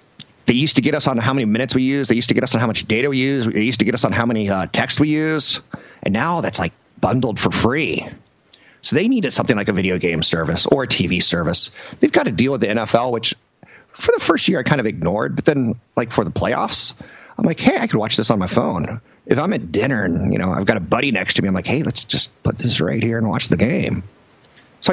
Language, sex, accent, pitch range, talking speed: English, male, American, 105-135 Hz, 275 wpm